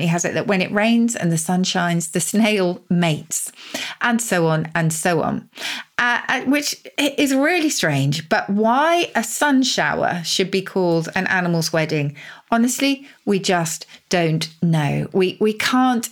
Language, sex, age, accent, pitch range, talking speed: English, female, 40-59, British, 165-220 Hz, 160 wpm